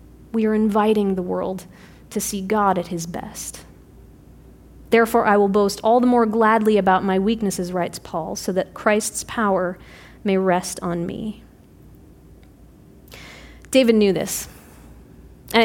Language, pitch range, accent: English, 190-235 Hz, American